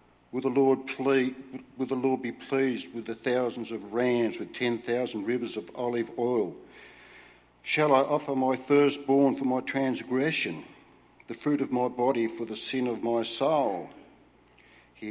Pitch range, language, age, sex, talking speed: 110-135 Hz, English, 60-79, male, 160 wpm